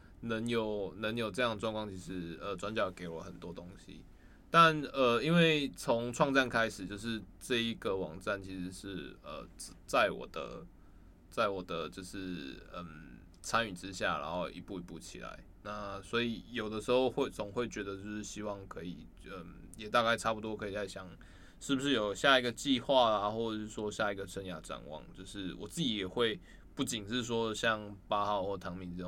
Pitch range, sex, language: 90-115 Hz, male, Chinese